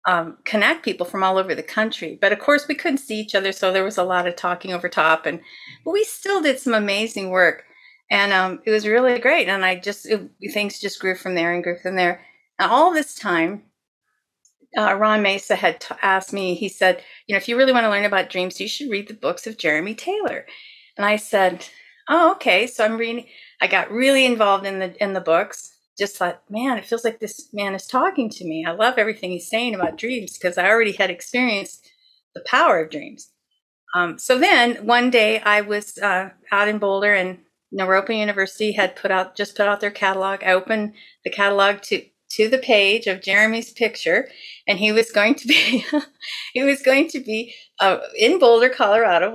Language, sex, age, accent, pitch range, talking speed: English, female, 40-59, American, 190-240 Hz, 210 wpm